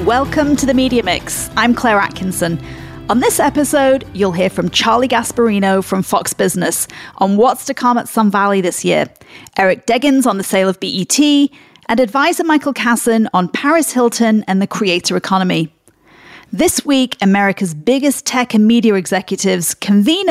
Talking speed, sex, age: 165 wpm, female, 40-59